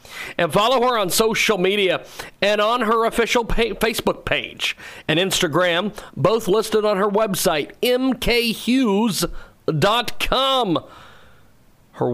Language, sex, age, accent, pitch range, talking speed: English, male, 40-59, American, 170-230 Hz, 110 wpm